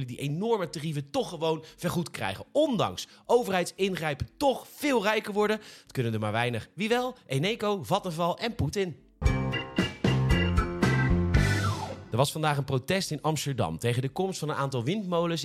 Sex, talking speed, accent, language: male, 150 wpm, Dutch, Dutch